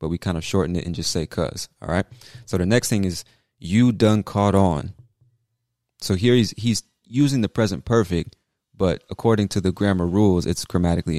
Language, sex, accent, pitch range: English, male, American, 90-105 Hz